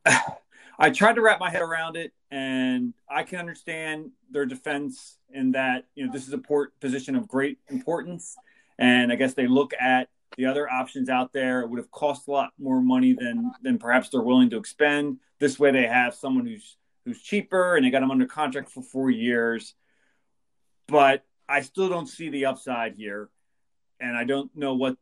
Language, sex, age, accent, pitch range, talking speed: English, male, 30-49, American, 125-180 Hz, 195 wpm